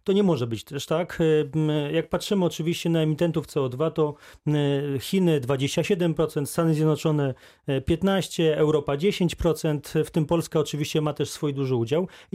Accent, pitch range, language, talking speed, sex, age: native, 150-180 Hz, Polish, 145 wpm, male, 30-49